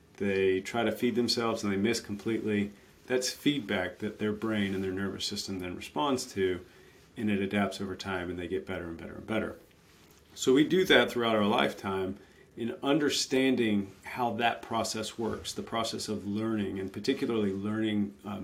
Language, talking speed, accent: English, 180 wpm, American